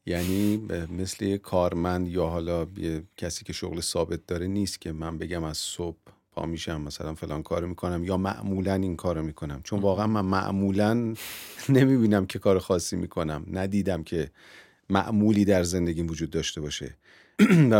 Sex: male